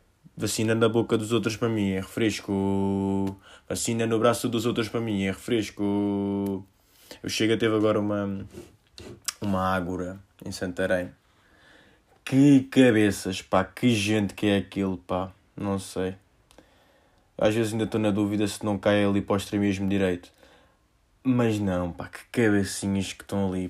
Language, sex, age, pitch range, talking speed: Portuguese, male, 20-39, 95-115 Hz, 150 wpm